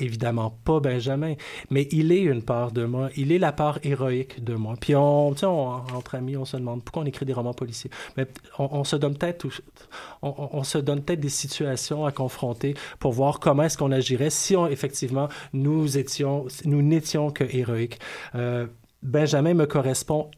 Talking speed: 190 wpm